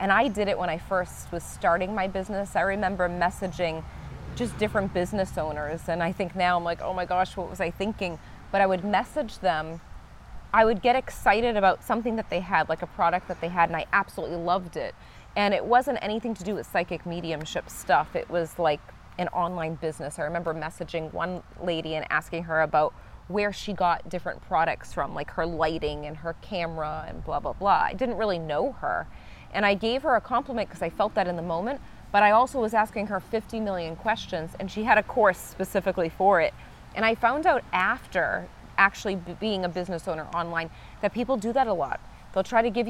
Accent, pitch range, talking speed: American, 170-215 Hz, 215 wpm